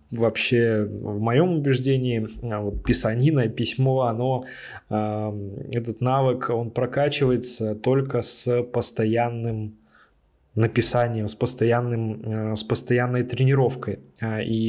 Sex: male